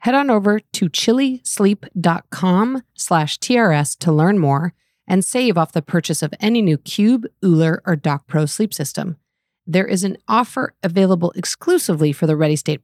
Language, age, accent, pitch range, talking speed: English, 40-59, American, 155-200 Hz, 165 wpm